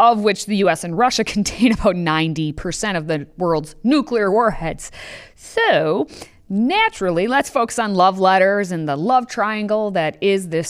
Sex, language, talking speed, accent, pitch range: female, English, 155 wpm, American, 175-260 Hz